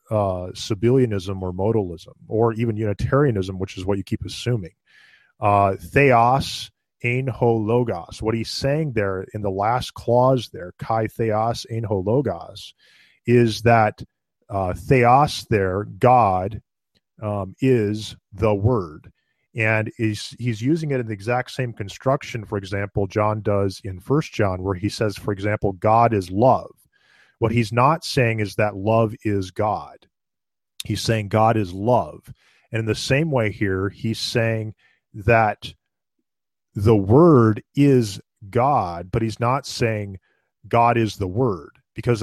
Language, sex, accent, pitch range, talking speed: English, male, American, 100-120 Hz, 150 wpm